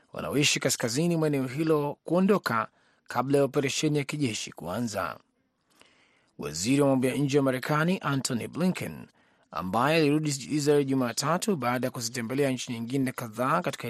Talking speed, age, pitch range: 130 wpm, 30-49, 130-155 Hz